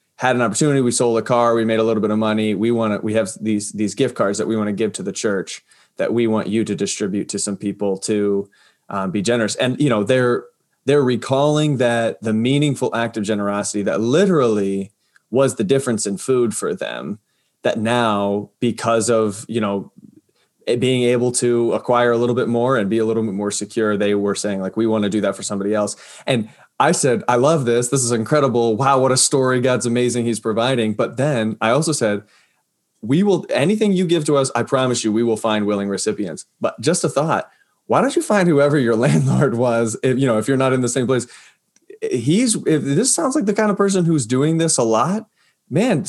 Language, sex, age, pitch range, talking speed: English, male, 20-39, 110-135 Hz, 225 wpm